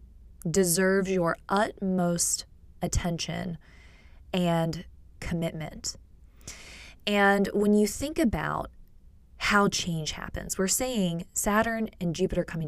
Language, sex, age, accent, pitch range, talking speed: English, female, 20-39, American, 165-210 Hz, 95 wpm